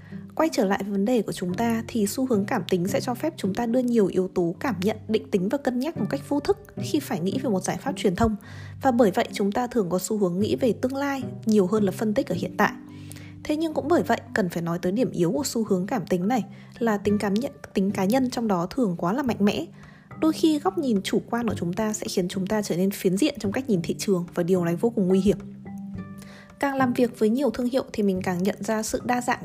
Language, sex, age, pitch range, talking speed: Vietnamese, female, 20-39, 190-250 Hz, 280 wpm